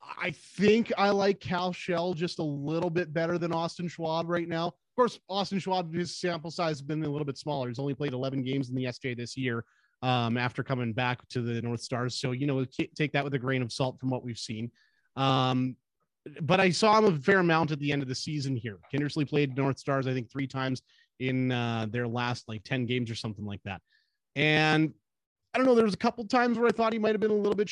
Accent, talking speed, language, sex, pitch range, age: American, 245 wpm, English, male, 130-170 Hz, 30-49